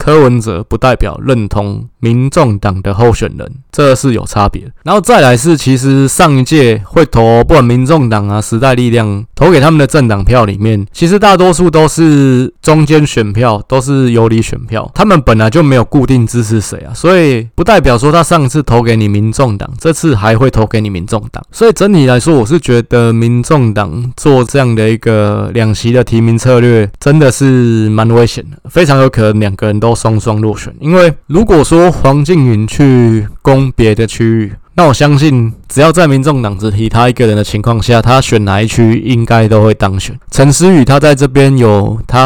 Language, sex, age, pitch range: Chinese, male, 20-39, 110-140 Hz